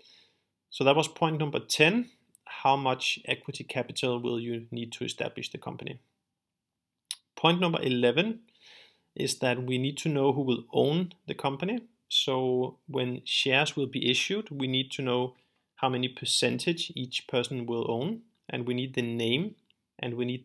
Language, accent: English, Danish